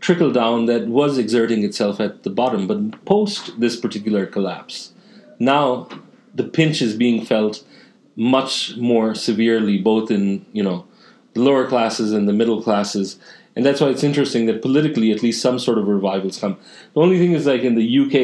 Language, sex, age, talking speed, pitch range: English, male, 40-59, 180 wpm, 105-140 Hz